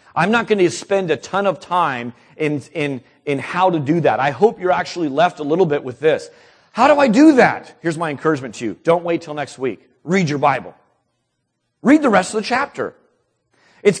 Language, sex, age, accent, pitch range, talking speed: English, male, 40-59, American, 130-185 Hz, 215 wpm